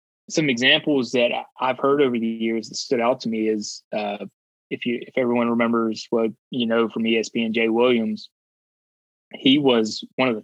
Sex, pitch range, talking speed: male, 115-130 Hz, 185 wpm